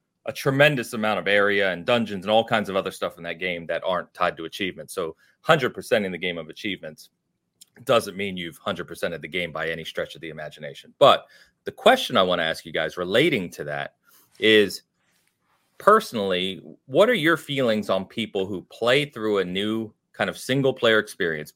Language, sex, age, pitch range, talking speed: English, male, 30-49, 95-125 Hz, 200 wpm